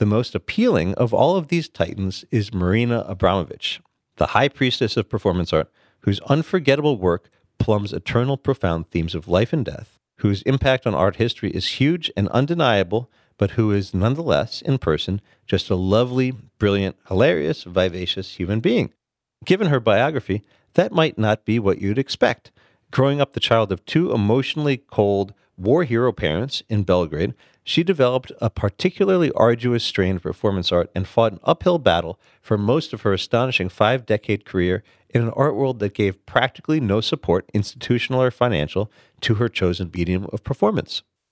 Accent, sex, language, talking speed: American, male, English, 165 wpm